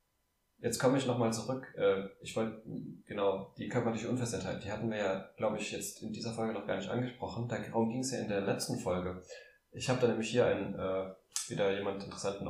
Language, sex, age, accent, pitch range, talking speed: German, male, 20-39, German, 95-120 Hz, 200 wpm